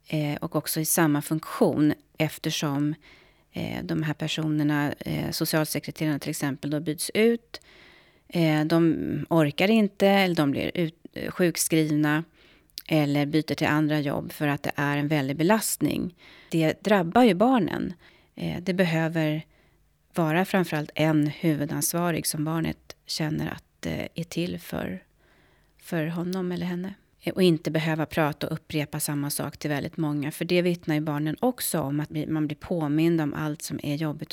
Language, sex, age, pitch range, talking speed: Swedish, female, 30-49, 150-180 Hz, 145 wpm